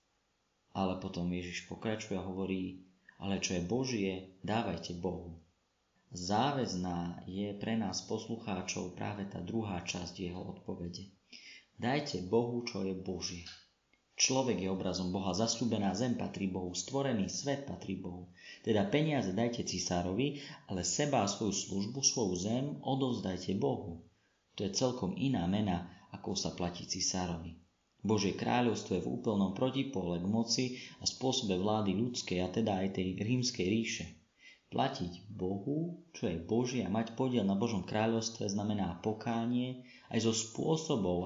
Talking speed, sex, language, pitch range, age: 140 wpm, male, Slovak, 90-115 Hz, 30-49